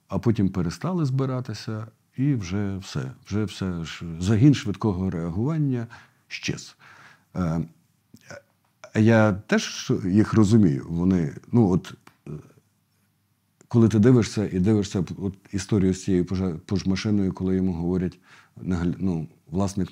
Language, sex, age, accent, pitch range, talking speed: Ukrainian, male, 50-69, native, 95-130 Hz, 115 wpm